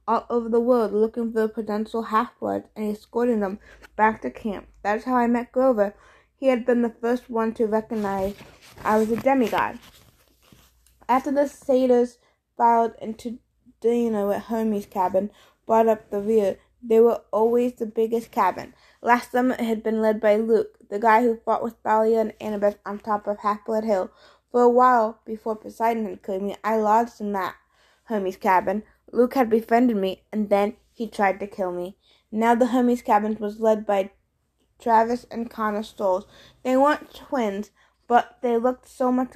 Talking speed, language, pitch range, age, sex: 180 wpm, English, 205-235 Hz, 20-39, female